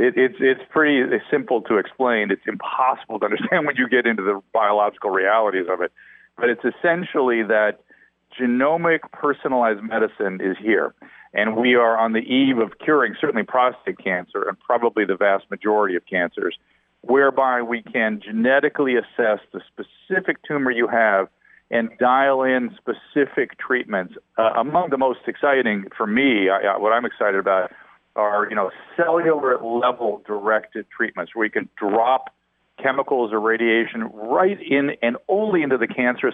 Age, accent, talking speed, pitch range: 40-59, American, 150 wpm, 110-140 Hz